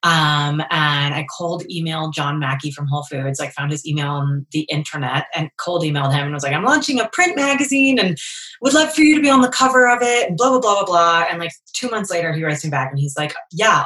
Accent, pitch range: American, 155-185 Hz